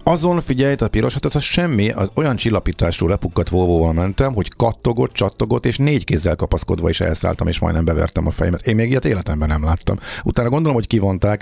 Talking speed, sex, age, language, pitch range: 190 wpm, male, 50-69, Hungarian, 85-115 Hz